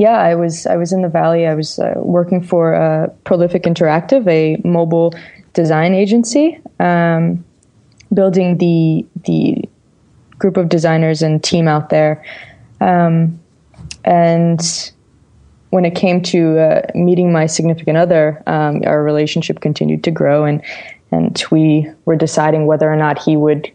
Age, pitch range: 20-39, 155-175 Hz